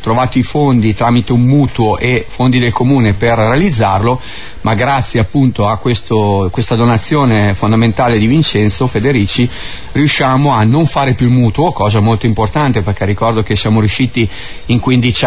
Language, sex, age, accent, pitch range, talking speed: Italian, male, 40-59, native, 110-130 Hz, 155 wpm